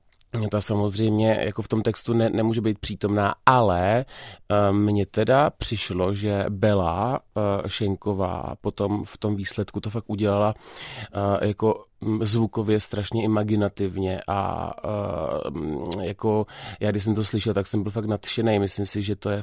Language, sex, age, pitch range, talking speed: Czech, male, 30-49, 95-105 Hz, 140 wpm